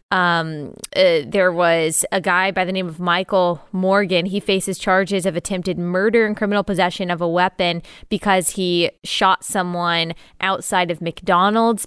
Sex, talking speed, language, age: female, 155 wpm, English, 20-39